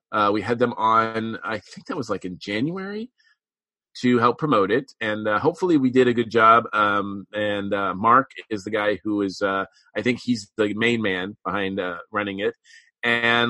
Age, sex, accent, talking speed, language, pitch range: 30-49, male, American, 200 wpm, English, 105-130 Hz